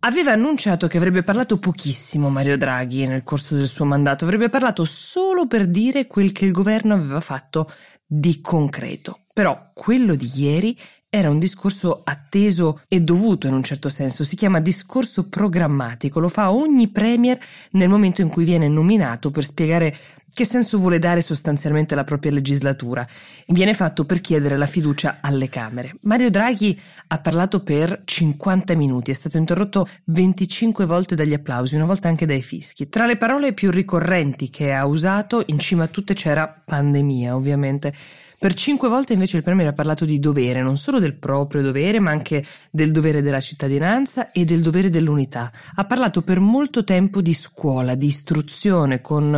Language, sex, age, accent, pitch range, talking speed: Italian, female, 20-39, native, 145-195 Hz, 170 wpm